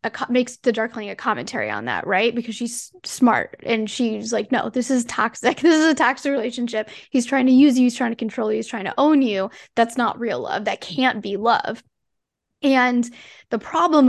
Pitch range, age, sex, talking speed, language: 225-265 Hz, 10-29, female, 210 wpm, English